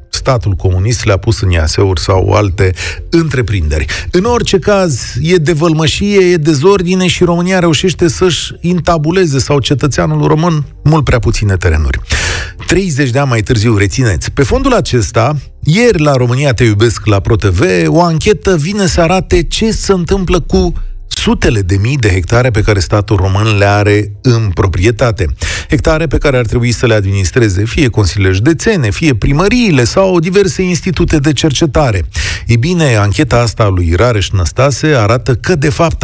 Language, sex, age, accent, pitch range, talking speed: Romanian, male, 40-59, native, 100-155 Hz, 160 wpm